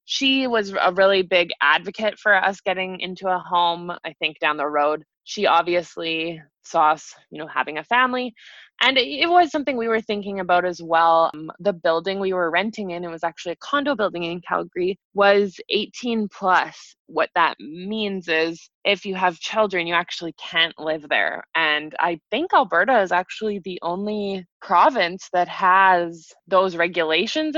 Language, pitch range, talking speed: English, 170-205 Hz, 175 wpm